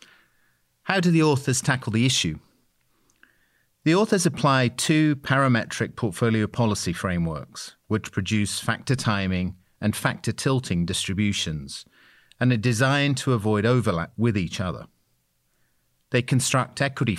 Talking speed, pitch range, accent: 120 wpm, 95-125 Hz, British